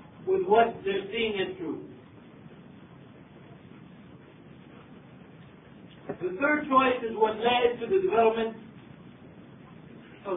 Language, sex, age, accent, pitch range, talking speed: English, male, 50-69, American, 215-265 Hz, 95 wpm